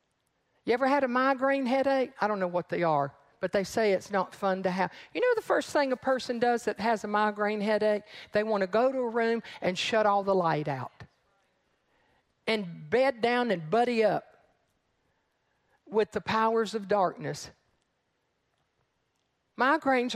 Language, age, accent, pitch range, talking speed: English, 50-69, American, 210-270 Hz, 175 wpm